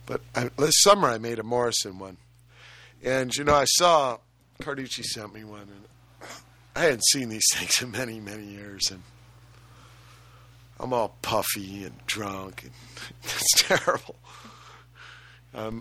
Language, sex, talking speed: English, male, 140 wpm